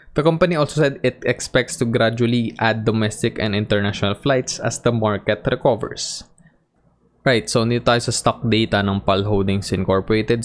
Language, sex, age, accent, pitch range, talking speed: English, male, 20-39, Filipino, 95-120 Hz, 160 wpm